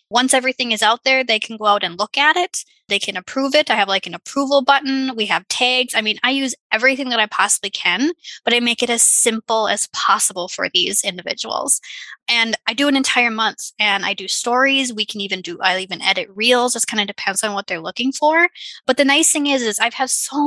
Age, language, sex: 20-39, English, female